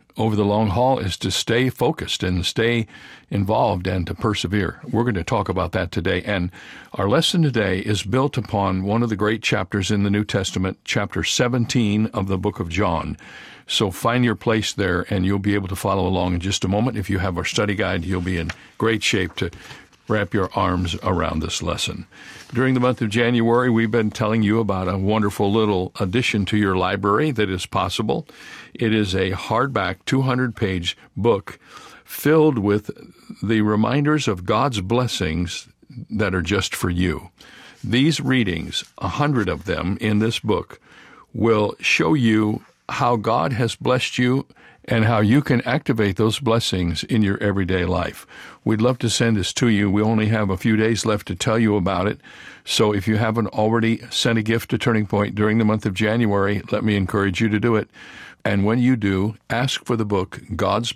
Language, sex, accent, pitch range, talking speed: English, male, American, 95-115 Hz, 190 wpm